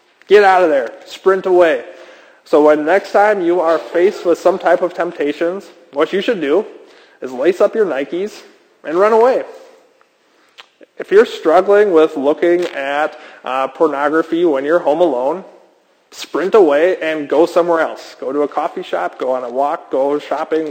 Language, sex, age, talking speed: English, male, 20-39, 170 wpm